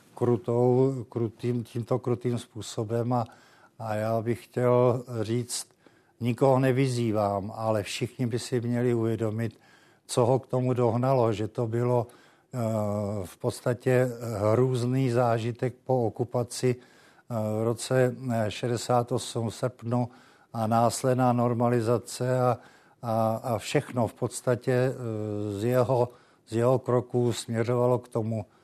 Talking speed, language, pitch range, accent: 105 wpm, Czech, 110-125 Hz, native